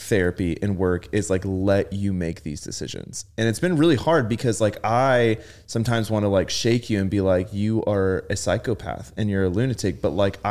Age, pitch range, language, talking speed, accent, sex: 20-39, 95-110 Hz, English, 210 wpm, American, male